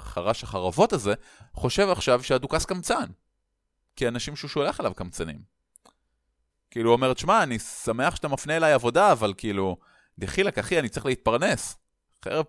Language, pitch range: Hebrew, 110-160 Hz